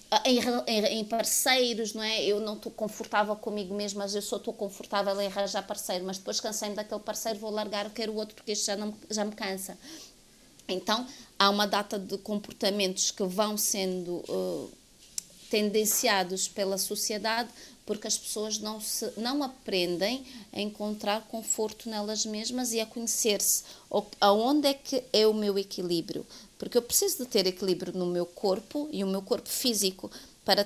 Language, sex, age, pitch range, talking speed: Portuguese, female, 30-49, 195-220 Hz, 165 wpm